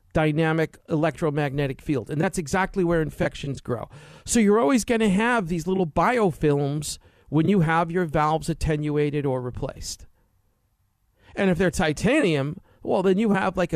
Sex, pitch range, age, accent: male, 110-185 Hz, 50-69, American